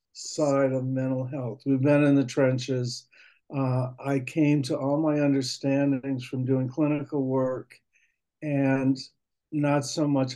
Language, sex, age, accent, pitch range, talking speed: English, male, 60-79, American, 130-150 Hz, 140 wpm